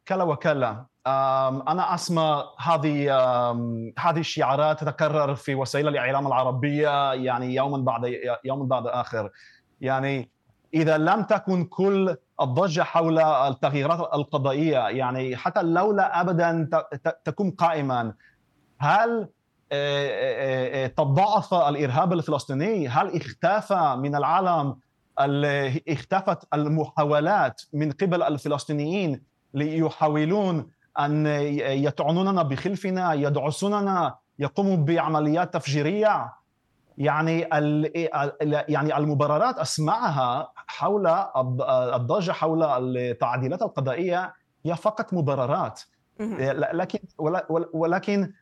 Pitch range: 140-175 Hz